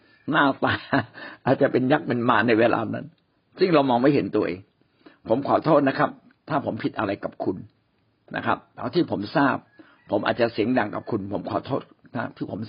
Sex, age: male, 60-79